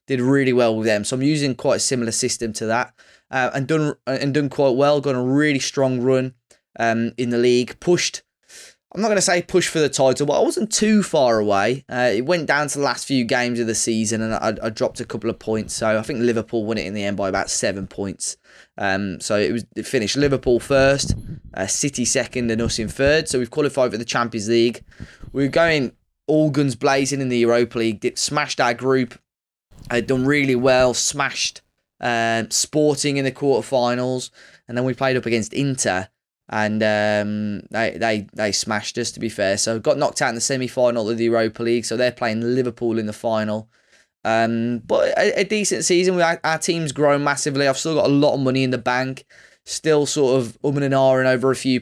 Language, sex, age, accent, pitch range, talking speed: English, male, 10-29, British, 115-140 Hz, 225 wpm